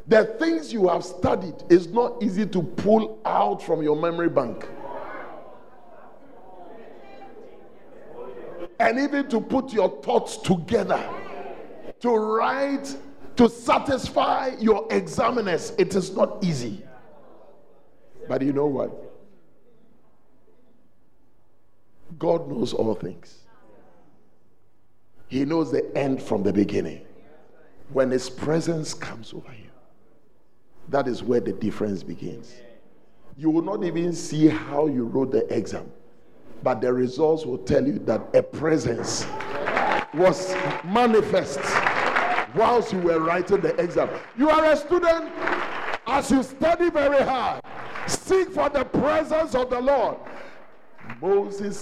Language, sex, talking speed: English, male, 120 wpm